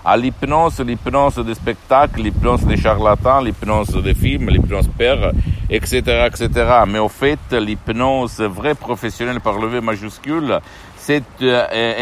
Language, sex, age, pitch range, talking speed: Italian, male, 60-79, 100-125 Hz, 135 wpm